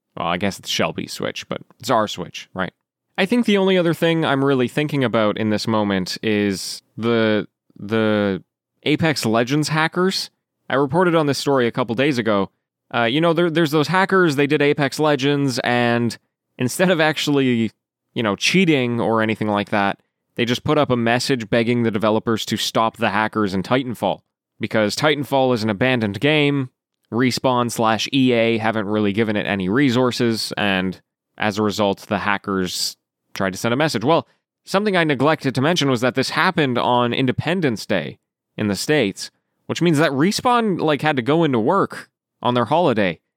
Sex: male